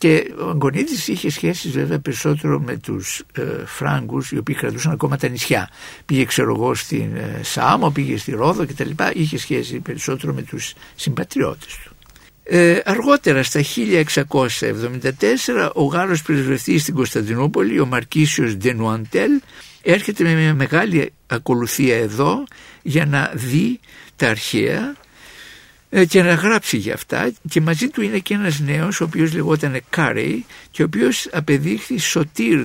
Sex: male